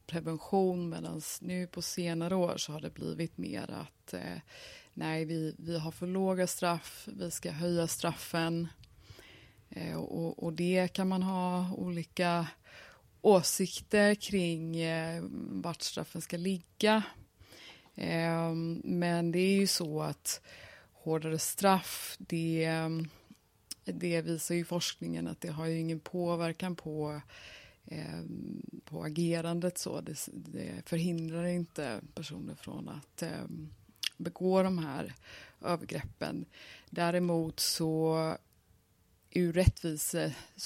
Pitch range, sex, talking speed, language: 160-180 Hz, female, 110 wpm, Swedish